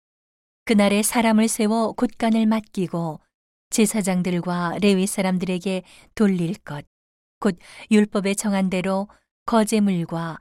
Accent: native